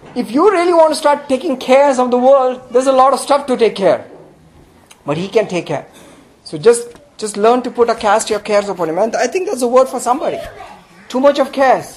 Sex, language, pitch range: male, English, 250-305 Hz